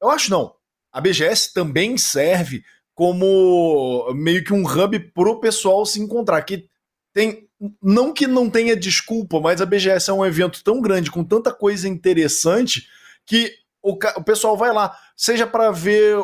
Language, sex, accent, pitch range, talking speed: Portuguese, male, Brazilian, 165-210 Hz, 165 wpm